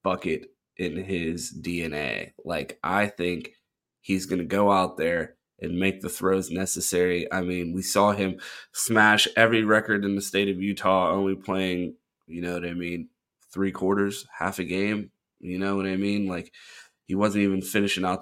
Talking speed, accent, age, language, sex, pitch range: 175 wpm, American, 20-39, English, male, 90-105 Hz